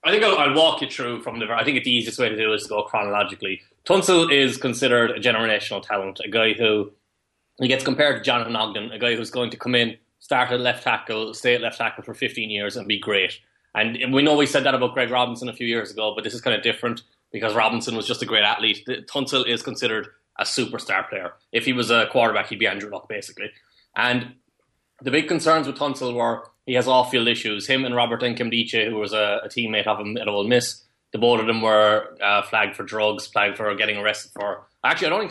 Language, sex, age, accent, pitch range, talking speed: English, male, 20-39, Irish, 110-135 Hz, 240 wpm